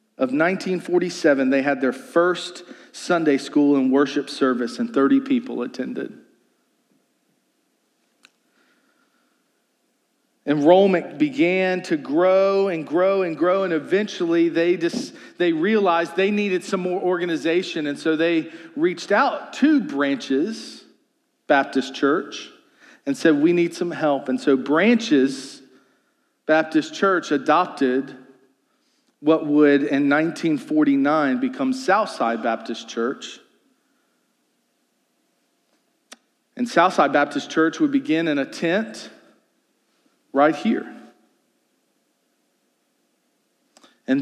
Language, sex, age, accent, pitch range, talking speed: English, male, 40-59, American, 155-260 Hz, 100 wpm